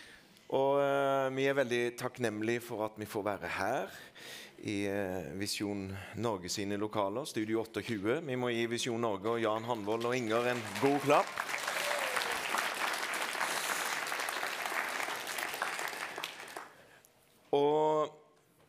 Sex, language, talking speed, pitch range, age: male, English, 110 wpm, 105-120 Hz, 30-49